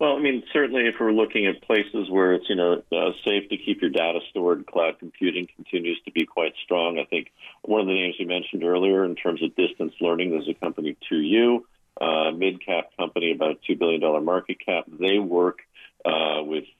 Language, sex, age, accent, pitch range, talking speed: English, male, 40-59, American, 80-100 Hz, 205 wpm